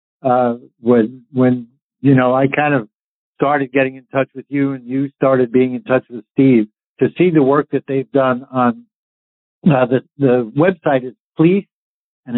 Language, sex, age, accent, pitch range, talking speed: English, male, 60-79, American, 125-145 Hz, 180 wpm